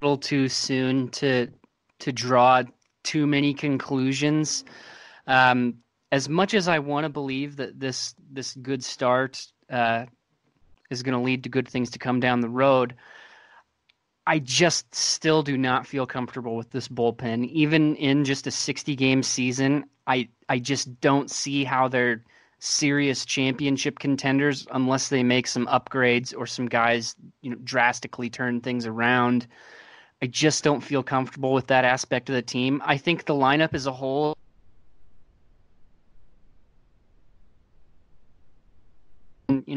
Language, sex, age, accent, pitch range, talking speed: English, male, 20-39, American, 125-145 Hz, 140 wpm